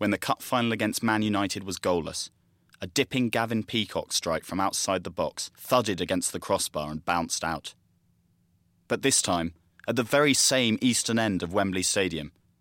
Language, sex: English, male